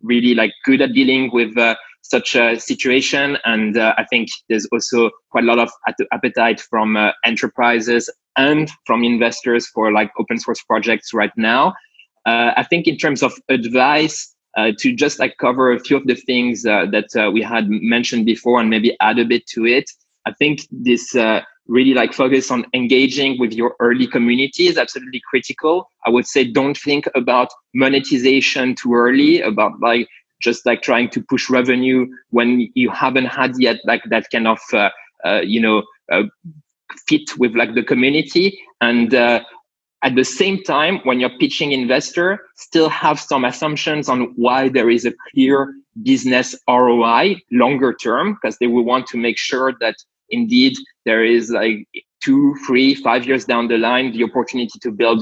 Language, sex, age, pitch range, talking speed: English, male, 20-39, 120-145 Hz, 180 wpm